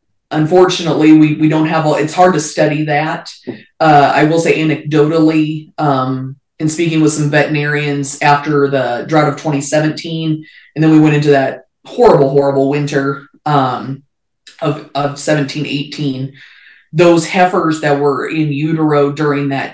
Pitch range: 140-155 Hz